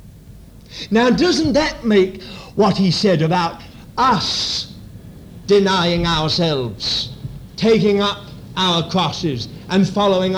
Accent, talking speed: British, 100 wpm